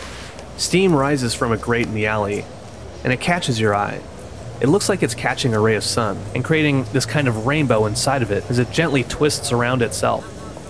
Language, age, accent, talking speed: English, 30-49, American, 210 wpm